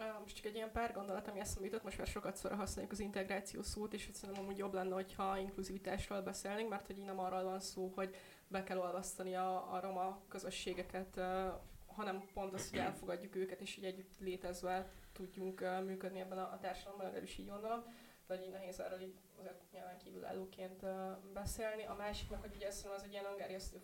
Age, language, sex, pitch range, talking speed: 20-39, Hungarian, female, 185-200 Hz, 190 wpm